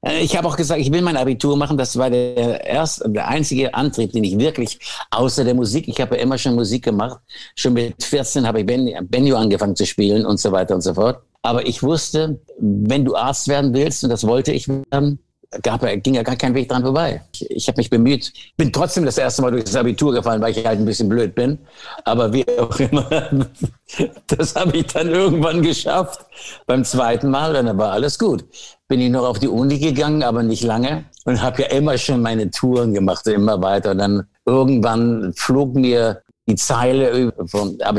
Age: 60-79